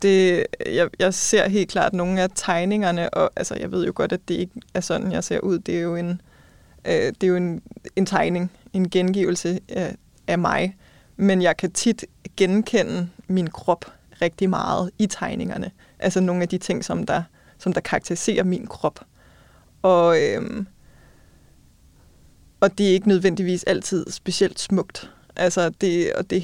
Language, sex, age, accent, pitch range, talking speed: English, female, 20-39, Danish, 175-195 Hz, 150 wpm